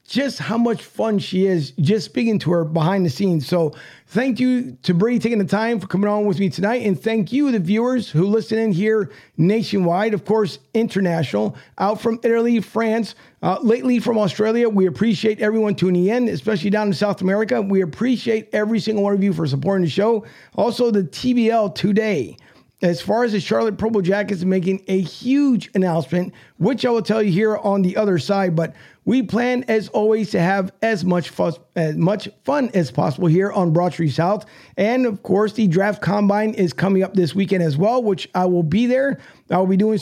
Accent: American